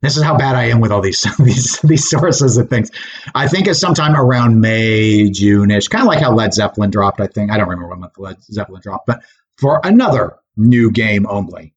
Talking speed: 225 wpm